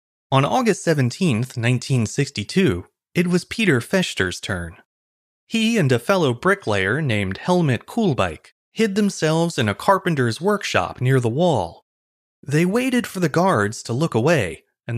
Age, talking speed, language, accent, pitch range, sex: 30-49, 140 wpm, English, American, 110-170 Hz, male